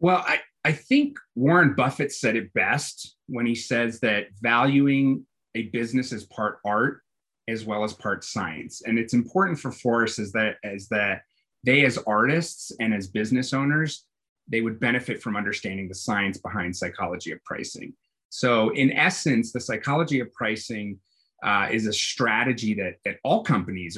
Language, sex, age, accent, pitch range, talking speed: English, male, 30-49, American, 100-130 Hz, 165 wpm